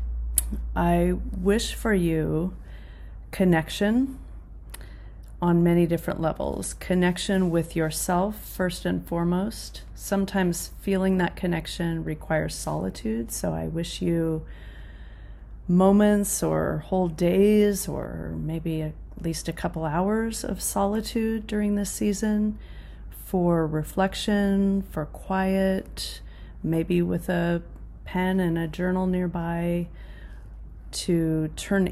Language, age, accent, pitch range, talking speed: English, 30-49, American, 165-190 Hz, 105 wpm